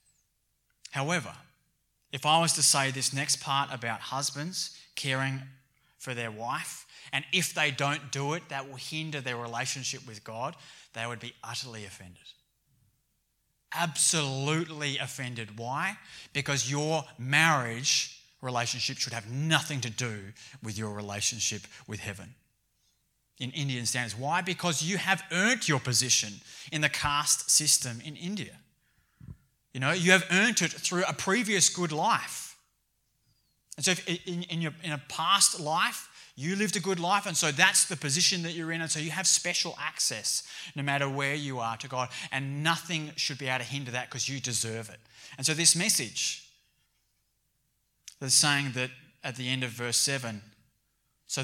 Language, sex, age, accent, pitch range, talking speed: English, male, 20-39, Australian, 120-155 Hz, 160 wpm